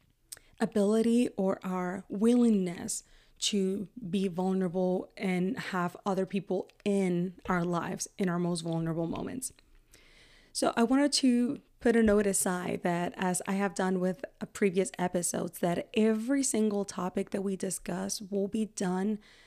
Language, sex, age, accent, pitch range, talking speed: English, female, 20-39, American, 185-220 Hz, 140 wpm